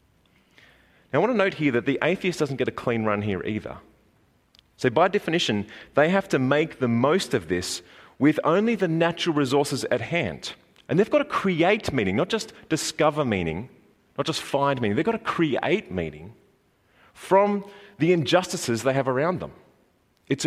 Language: English